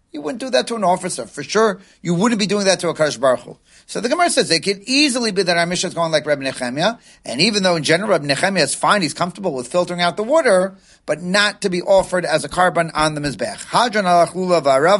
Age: 40-59